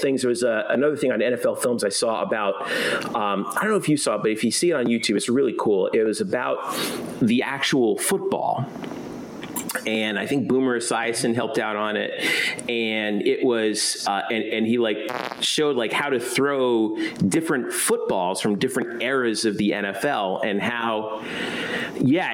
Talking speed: 185 wpm